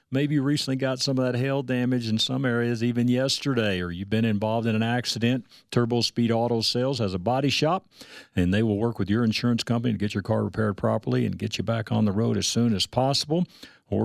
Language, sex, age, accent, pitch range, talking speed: English, male, 50-69, American, 110-135 Hz, 235 wpm